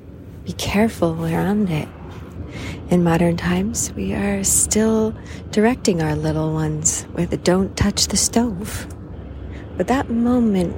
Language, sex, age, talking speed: English, female, 30-49, 130 wpm